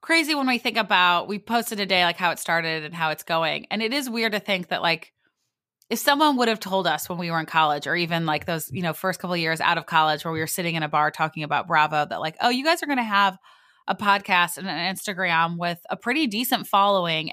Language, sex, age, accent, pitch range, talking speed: English, female, 20-39, American, 170-225 Hz, 270 wpm